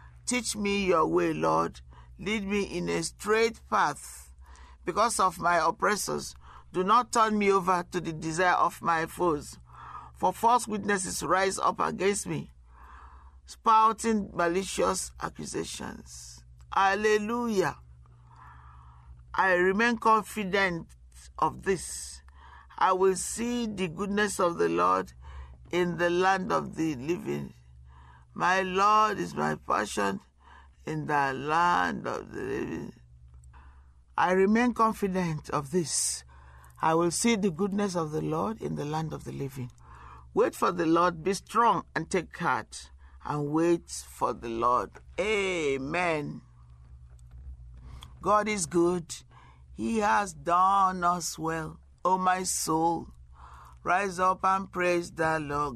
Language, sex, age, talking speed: English, male, 50-69, 125 wpm